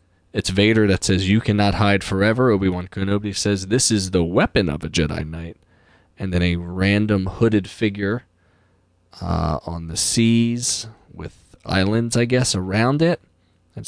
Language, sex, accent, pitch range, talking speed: English, male, American, 90-115 Hz, 155 wpm